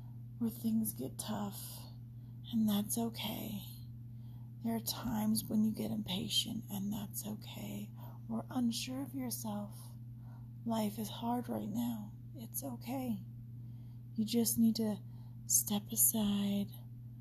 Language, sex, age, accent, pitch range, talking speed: English, female, 30-49, American, 115-120 Hz, 120 wpm